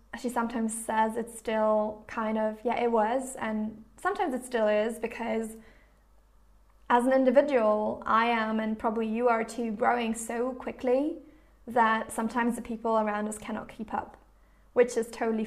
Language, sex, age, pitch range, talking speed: English, female, 20-39, 225-265 Hz, 160 wpm